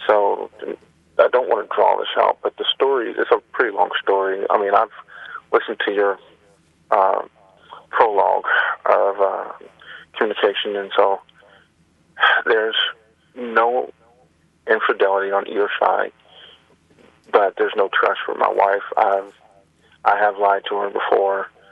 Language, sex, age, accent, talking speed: English, male, 30-49, American, 135 wpm